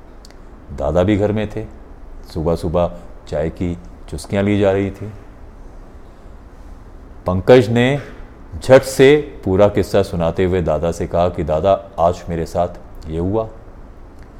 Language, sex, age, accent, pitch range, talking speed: Hindi, male, 40-59, native, 85-105 Hz, 135 wpm